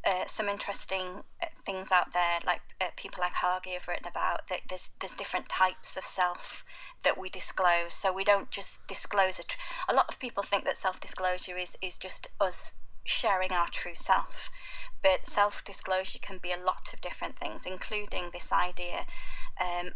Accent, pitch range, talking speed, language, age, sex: British, 180-205 Hz, 180 wpm, English, 30-49, female